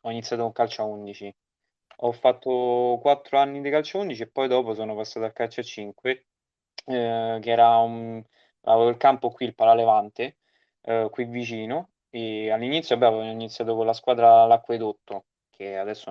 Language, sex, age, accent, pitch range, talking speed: Italian, male, 20-39, native, 110-120 Hz, 175 wpm